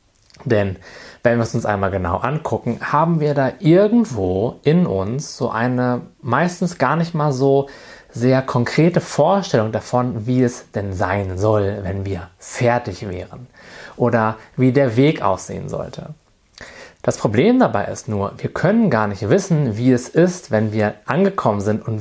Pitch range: 100-140 Hz